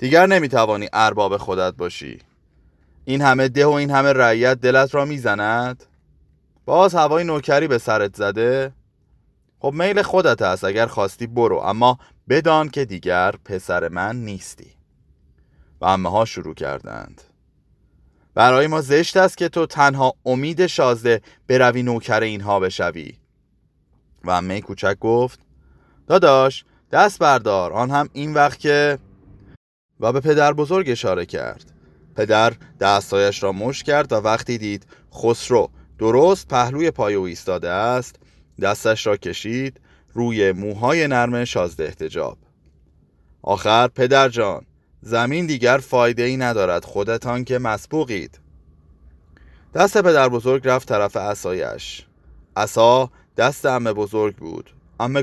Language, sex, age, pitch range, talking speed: Persian, male, 30-49, 100-140 Hz, 125 wpm